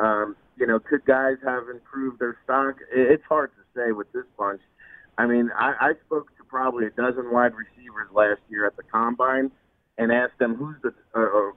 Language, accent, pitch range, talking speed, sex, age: English, American, 120-160 Hz, 195 wpm, male, 40-59